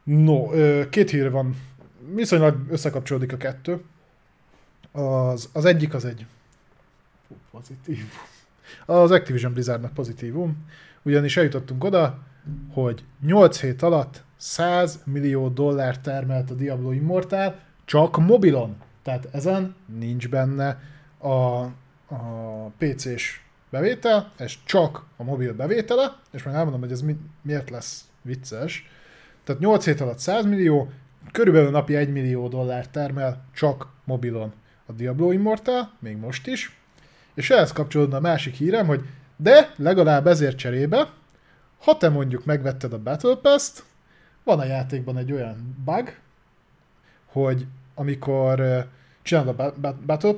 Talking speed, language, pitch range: 125 wpm, Hungarian, 130-165 Hz